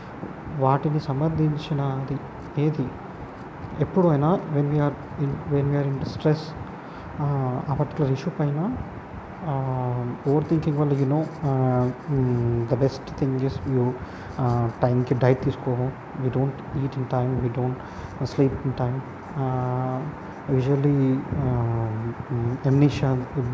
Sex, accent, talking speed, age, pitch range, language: male, native, 100 wpm, 30-49, 125-145 Hz, Telugu